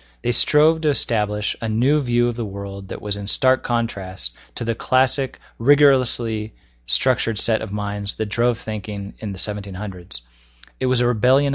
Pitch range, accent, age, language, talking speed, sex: 100-120 Hz, American, 20-39, English, 170 wpm, male